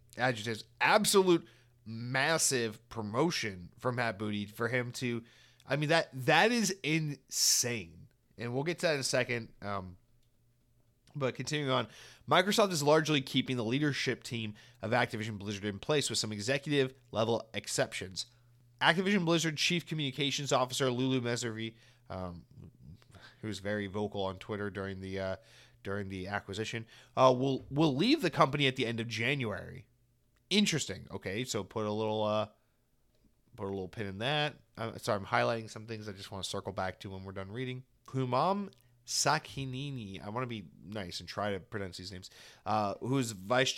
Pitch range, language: 105-130 Hz, English